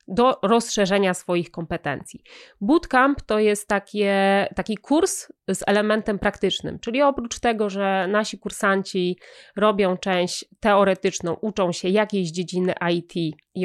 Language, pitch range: Polish, 180-220 Hz